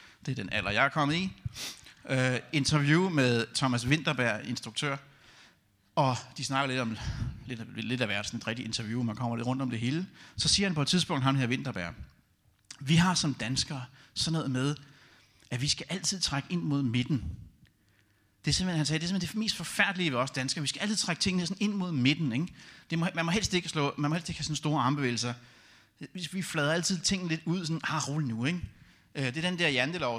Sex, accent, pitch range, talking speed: male, native, 115-160 Hz, 220 wpm